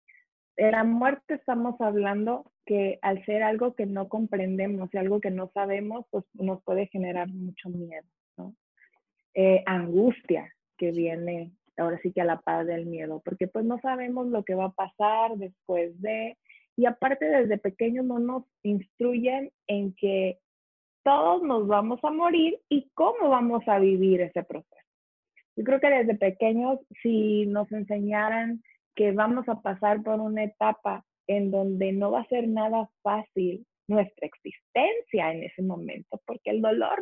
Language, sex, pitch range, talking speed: Spanish, female, 195-245 Hz, 160 wpm